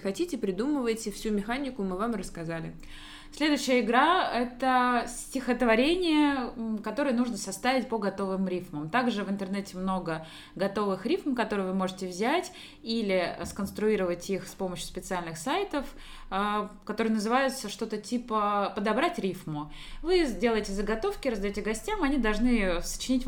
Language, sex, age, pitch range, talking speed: Russian, female, 20-39, 185-245 Hz, 125 wpm